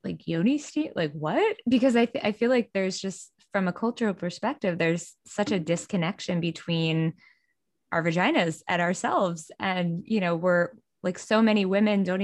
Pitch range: 165-200 Hz